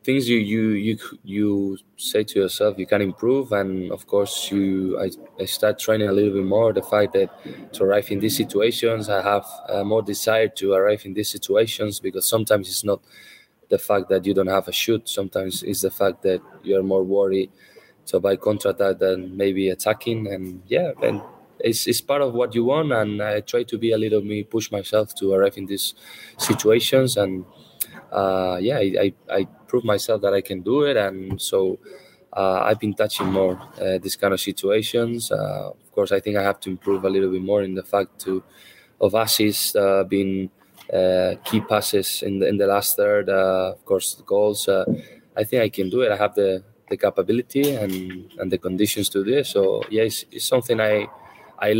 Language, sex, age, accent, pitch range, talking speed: English, male, 20-39, Spanish, 95-110 Hz, 205 wpm